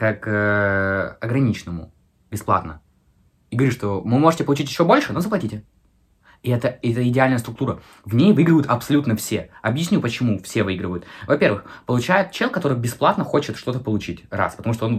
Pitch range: 105-165 Hz